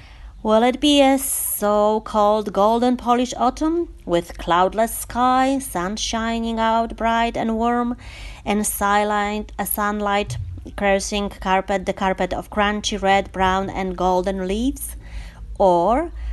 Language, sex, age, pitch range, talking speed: Polish, female, 30-49, 170-235 Hz, 120 wpm